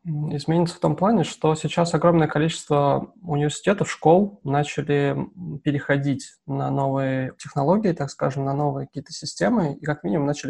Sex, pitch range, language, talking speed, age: male, 140-165 Hz, Russian, 145 wpm, 20-39